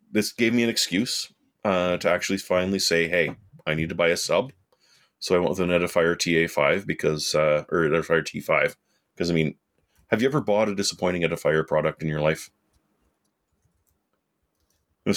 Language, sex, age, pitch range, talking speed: English, male, 30-49, 80-100 Hz, 175 wpm